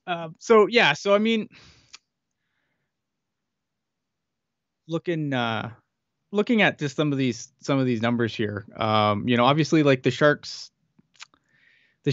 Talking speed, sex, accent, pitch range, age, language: 135 wpm, male, American, 115-145 Hz, 20-39, English